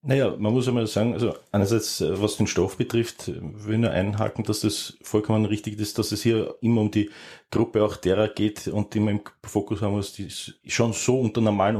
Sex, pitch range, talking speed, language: male, 105-120 Hz, 210 wpm, German